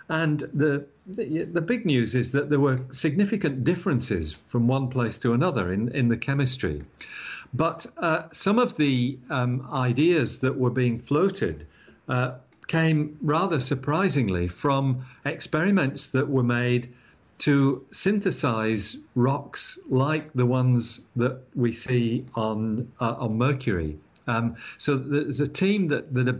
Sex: male